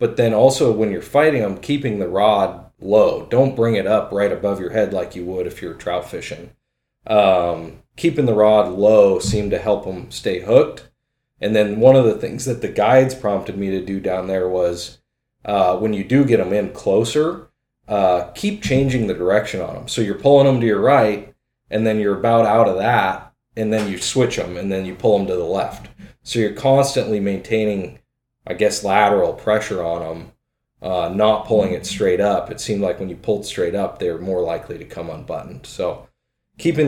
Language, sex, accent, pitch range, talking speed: English, male, American, 95-135 Hz, 210 wpm